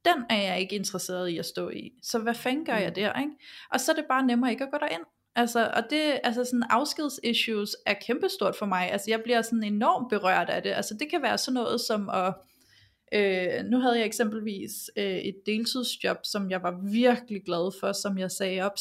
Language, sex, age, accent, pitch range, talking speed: Danish, female, 30-49, native, 200-250 Hz, 220 wpm